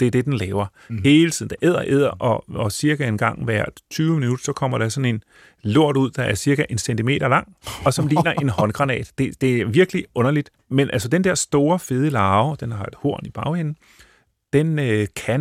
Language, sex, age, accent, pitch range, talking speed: Danish, male, 30-49, native, 115-150 Hz, 220 wpm